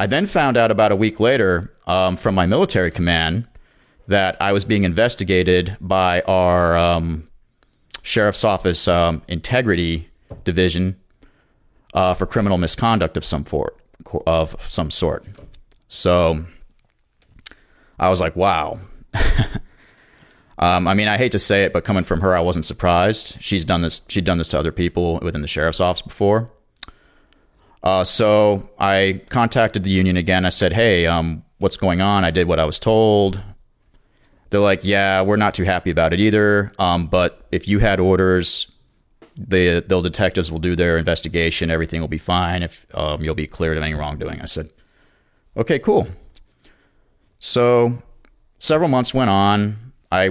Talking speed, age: 160 wpm, 30-49